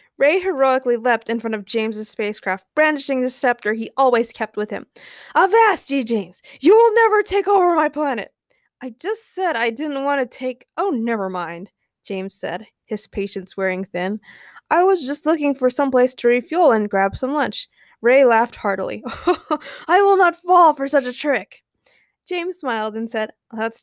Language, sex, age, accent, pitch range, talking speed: English, female, 20-39, American, 225-335 Hz, 185 wpm